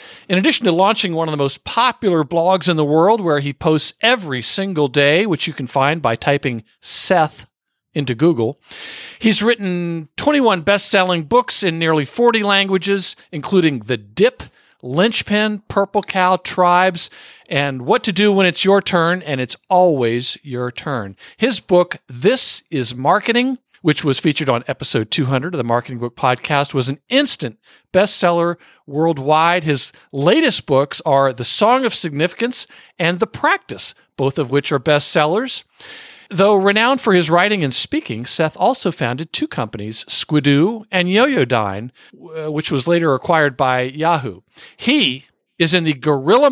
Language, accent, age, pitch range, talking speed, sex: English, American, 50-69, 140-195 Hz, 155 wpm, male